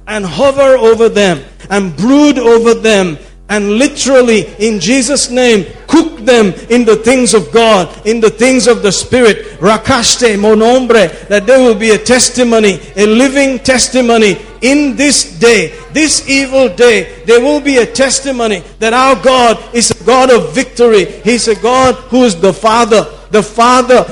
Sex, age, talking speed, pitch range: male, 50-69, 160 wpm, 215-240 Hz